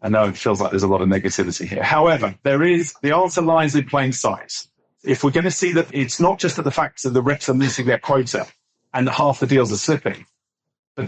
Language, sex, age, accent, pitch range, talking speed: English, male, 40-59, British, 120-145 Hz, 250 wpm